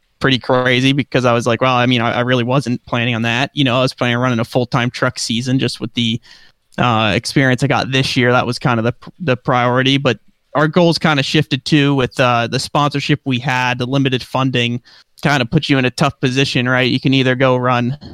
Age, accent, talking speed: 30-49, American, 240 wpm